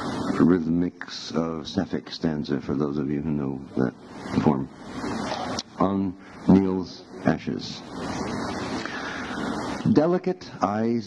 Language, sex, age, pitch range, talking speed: English, male, 60-79, 85-110 Hz, 90 wpm